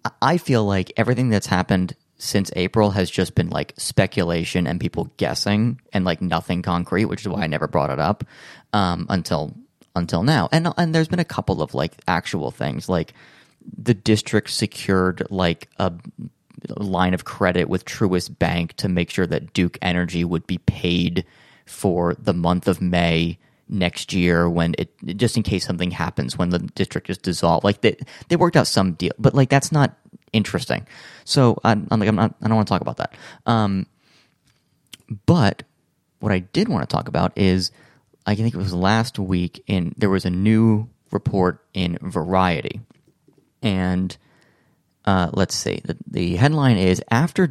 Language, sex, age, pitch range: English, male, 20-39, 90-115 Hz